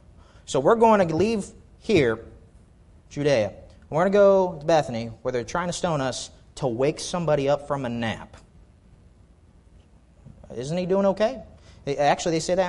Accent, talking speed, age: American, 160 wpm, 30-49